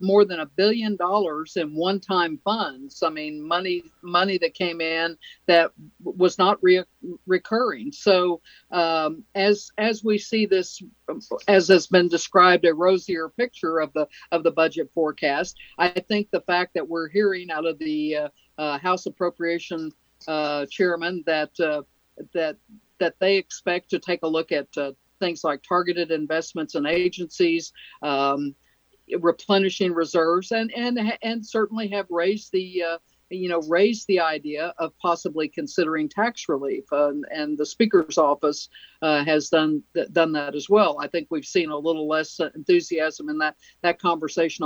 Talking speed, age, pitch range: 160 wpm, 60-79, 155-190 Hz